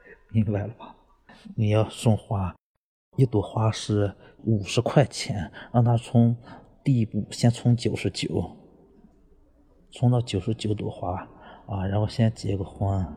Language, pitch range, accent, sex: Chinese, 95-115 Hz, native, male